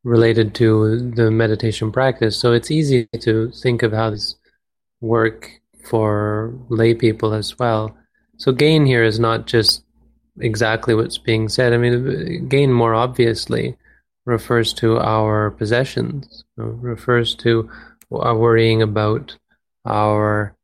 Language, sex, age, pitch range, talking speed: English, male, 20-39, 110-120 Hz, 125 wpm